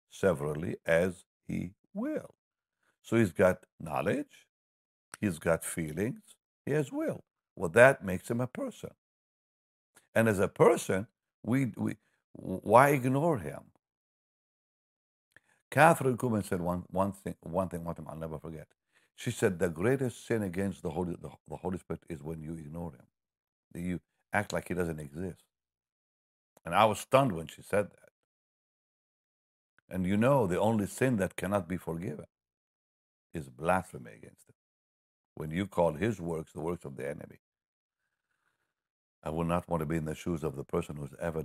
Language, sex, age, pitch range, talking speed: English, male, 60-79, 75-95 Hz, 160 wpm